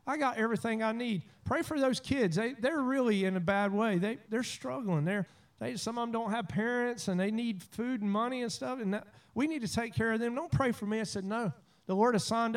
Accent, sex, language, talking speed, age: American, male, English, 260 wpm, 40-59